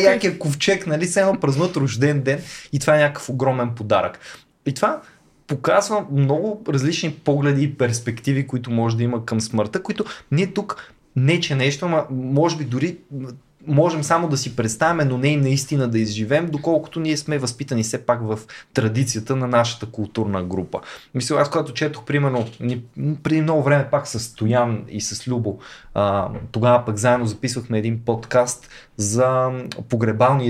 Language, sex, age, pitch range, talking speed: Bulgarian, male, 20-39, 115-150 Hz, 160 wpm